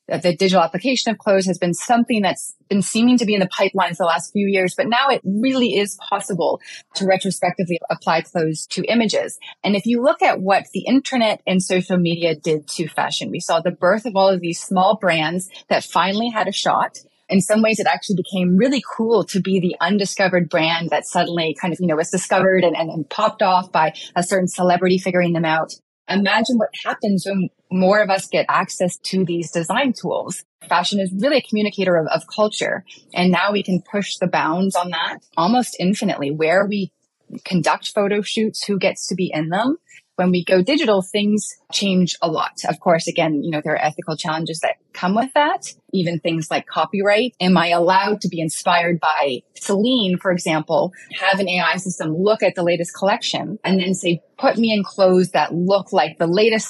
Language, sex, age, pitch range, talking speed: English, female, 30-49, 170-205 Hz, 205 wpm